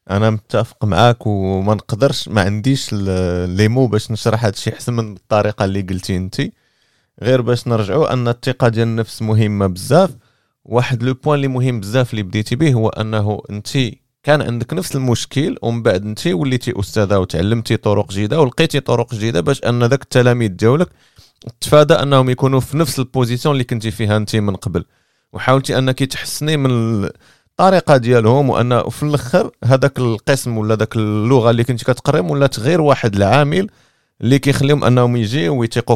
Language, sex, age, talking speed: Arabic, male, 30-49, 160 wpm